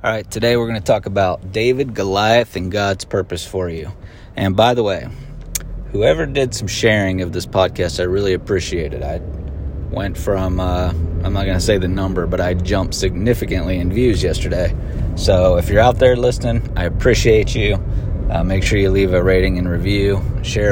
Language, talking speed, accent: English, 190 wpm, American